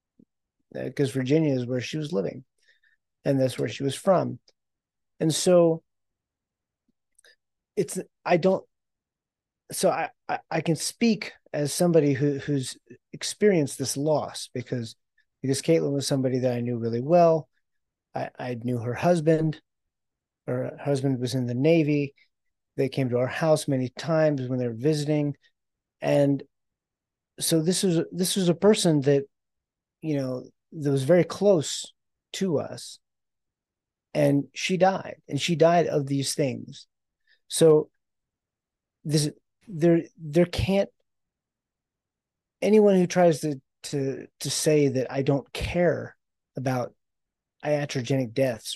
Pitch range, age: 135-170 Hz, 30-49